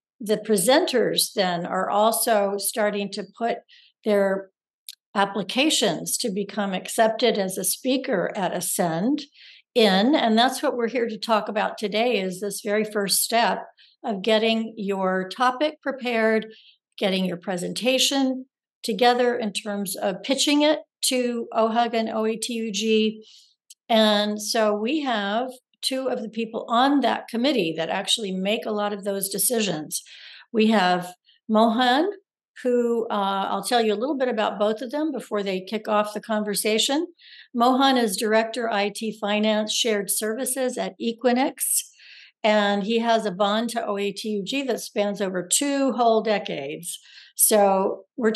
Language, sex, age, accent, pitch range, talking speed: English, female, 60-79, American, 205-245 Hz, 145 wpm